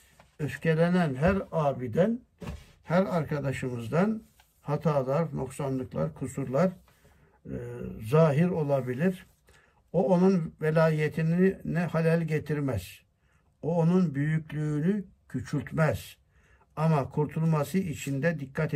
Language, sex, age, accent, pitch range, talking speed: Turkish, male, 60-79, native, 140-180 Hz, 80 wpm